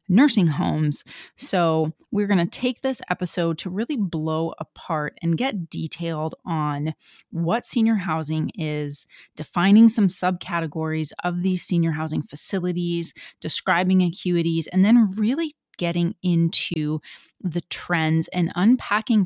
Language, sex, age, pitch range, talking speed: English, female, 30-49, 155-190 Hz, 125 wpm